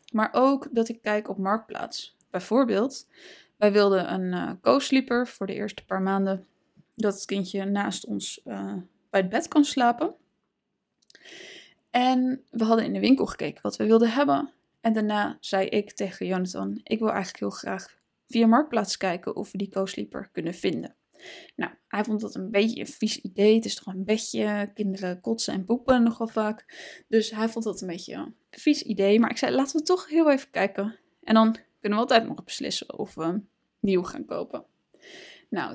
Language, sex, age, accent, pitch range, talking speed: Dutch, female, 20-39, Dutch, 195-245 Hz, 185 wpm